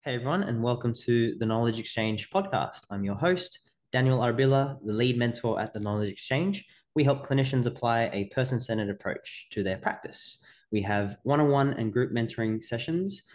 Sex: male